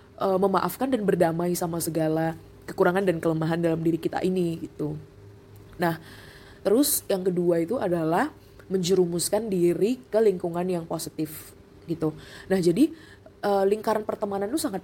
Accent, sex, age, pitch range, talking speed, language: native, female, 20-39, 165-200 Hz, 130 wpm, Indonesian